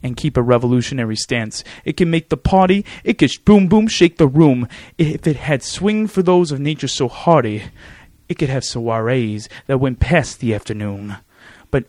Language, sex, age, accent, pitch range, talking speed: English, male, 30-49, American, 125-155 Hz, 190 wpm